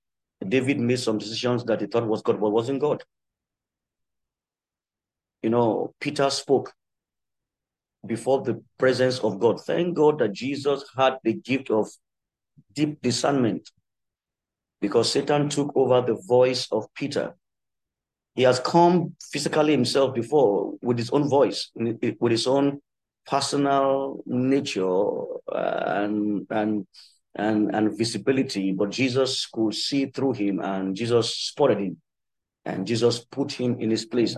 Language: English